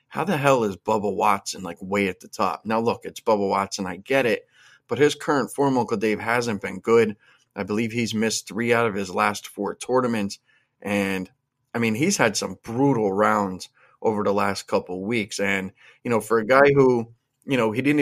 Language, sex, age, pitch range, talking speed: English, male, 30-49, 100-120 Hz, 210 wpm